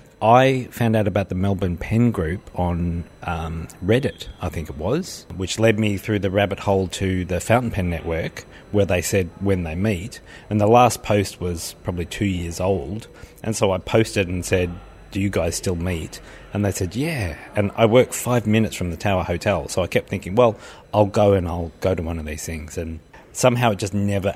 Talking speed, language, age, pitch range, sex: 210 wpm, English, 40-59, 90-110 Hz, male